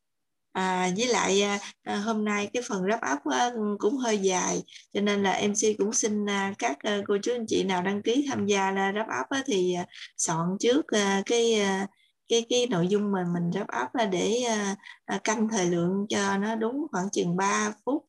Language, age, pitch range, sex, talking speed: Vietnamese, 20-39, 185-220 Hz, female, 180 wpm